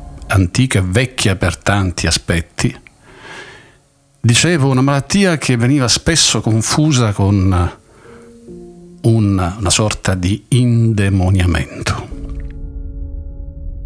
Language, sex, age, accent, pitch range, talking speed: Italian, male, 50-69, native, 90-115 Hz, 80 wpm